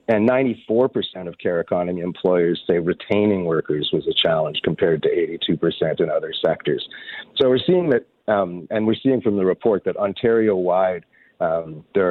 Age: 40-59